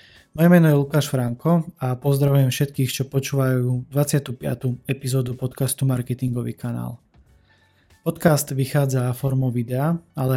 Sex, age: male, 20-39